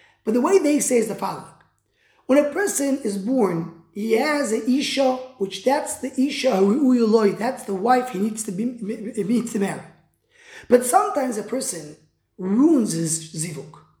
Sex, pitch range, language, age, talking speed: male, 210-295 Hz, English, 20-39, 155 wpm